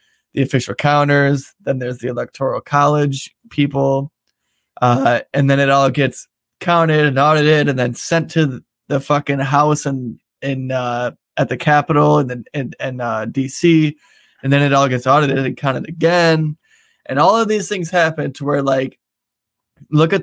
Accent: American